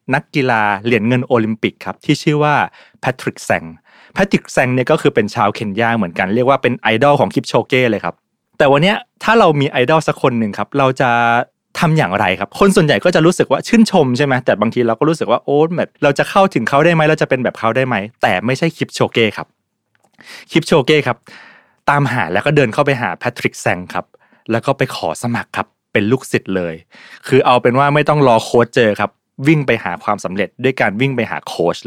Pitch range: 115-150 Hz